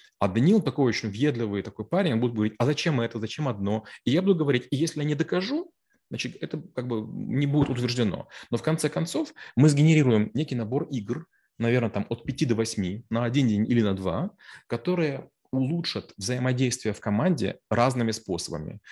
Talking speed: 185 wpm